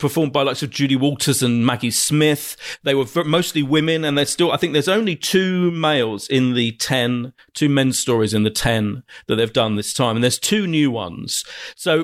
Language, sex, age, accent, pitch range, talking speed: English, male, 40-59, British, 115-150 Hz, 210 wpm